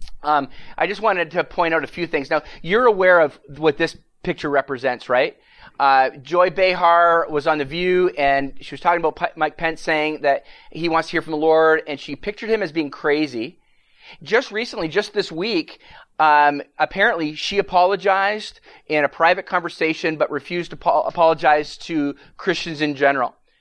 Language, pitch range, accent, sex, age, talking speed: English, 150-190 Hz, American, male, 30-49, 185 wpm